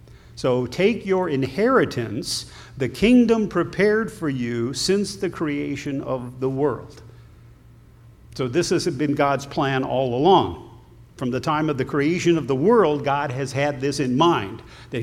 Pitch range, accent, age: 125-160 Hz, American, 50-69